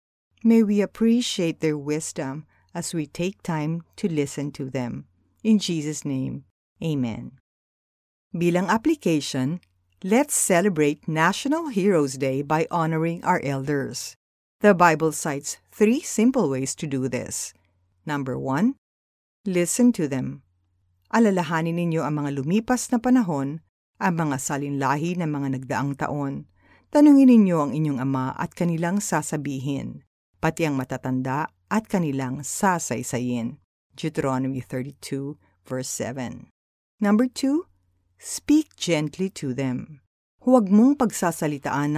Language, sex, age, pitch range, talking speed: Filipino, female, 50-69, 135-180 Hz, 120 wpm